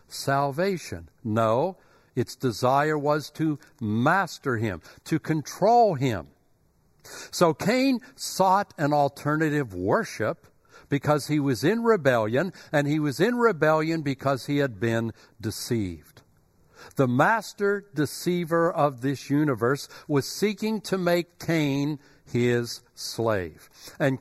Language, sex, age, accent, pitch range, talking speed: English, male, 60-79, American, 130-180 Hz, 115 wpm